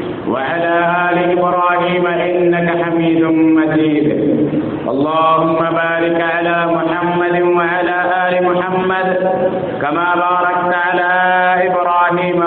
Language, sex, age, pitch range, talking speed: English, male, 50-69, 155-175 Hz, 80 wpm